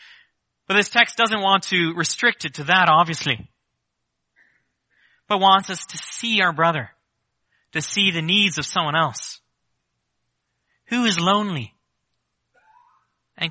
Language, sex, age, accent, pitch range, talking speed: English, male, 30-49, American, 155-210 Hz, 130 wpm